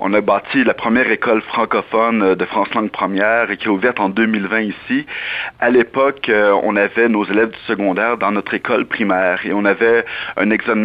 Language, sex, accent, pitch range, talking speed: French, male, French, 100-125 Hz, 195 wpm